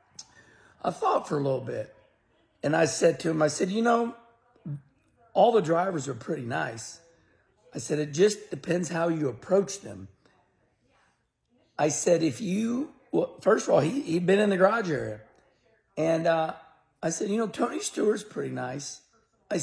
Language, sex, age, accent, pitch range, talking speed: English, male, 50-69, American, 155-205 Hz, 170 wpm